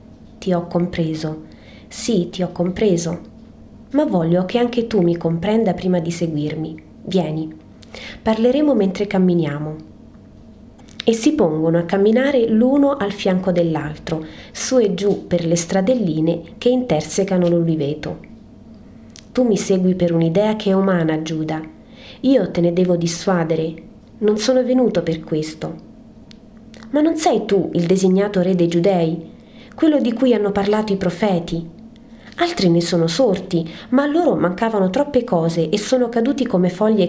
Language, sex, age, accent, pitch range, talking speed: Italian, female, 30-49, native, 170-230 Hz, 140 wpm